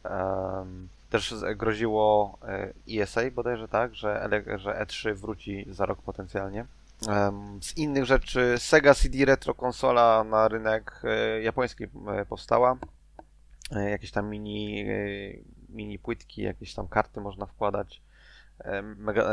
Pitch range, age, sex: 95-110 Hz, 20-39, male